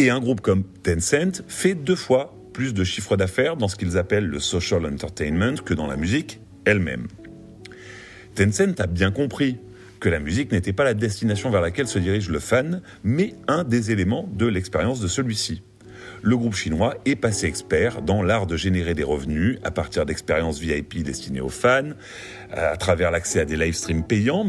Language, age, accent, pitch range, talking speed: French, 40-59, French, 90-125 Hz, 185 wpm